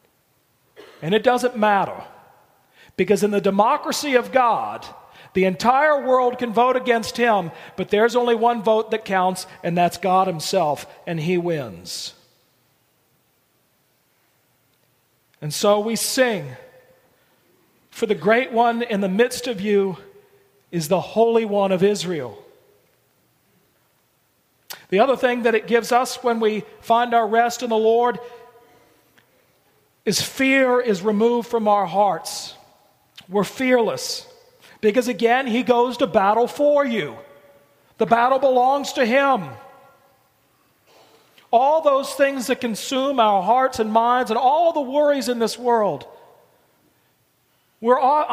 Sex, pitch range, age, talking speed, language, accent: male, 205-255 Hz, 40-59, 130 wpm, English, American